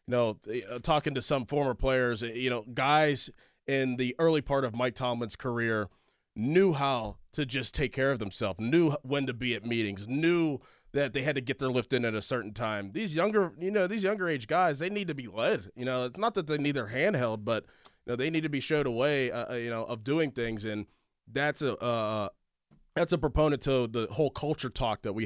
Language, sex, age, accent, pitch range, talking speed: English, male, 20-39, American, 115-150 Hz, 230 wpm